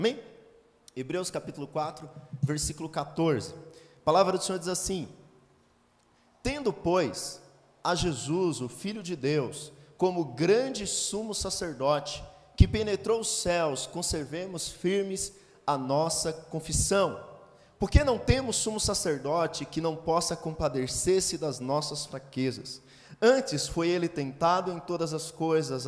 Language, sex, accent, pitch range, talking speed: Portuguese, male, Brazilian, 145-185 Hz, 125 wpm